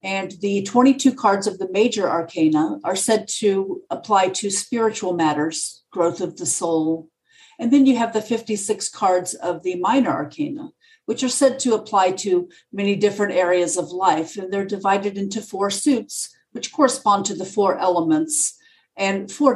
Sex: female